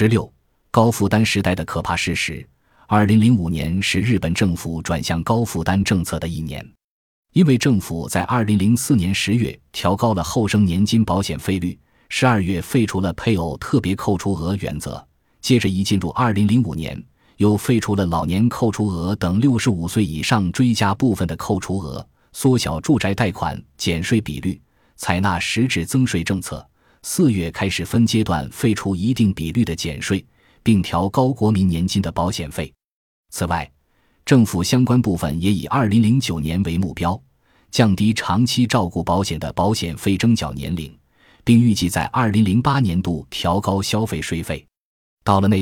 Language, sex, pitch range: Chinese, male, 85-115 Hz